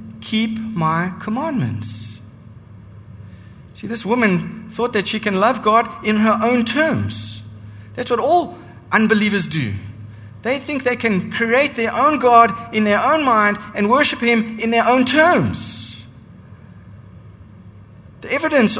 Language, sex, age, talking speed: English, male, 60-79, 135 wpm